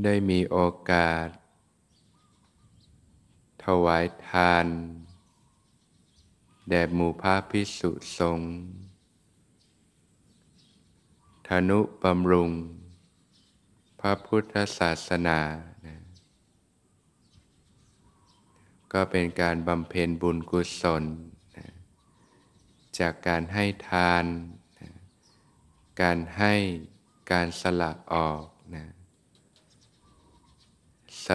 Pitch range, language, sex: 85-95 Hz, Thai, male